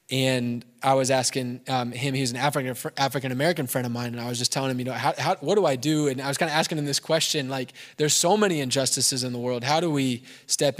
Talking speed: 265 wpm